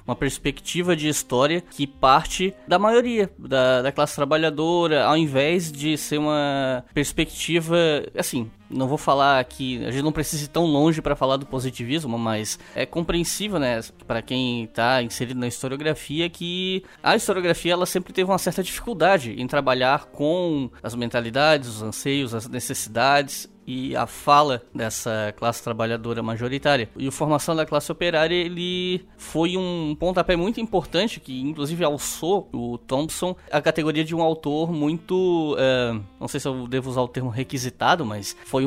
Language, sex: Portuguese, male